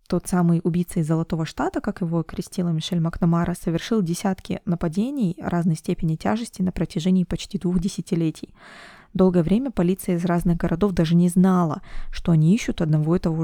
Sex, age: female, 20-39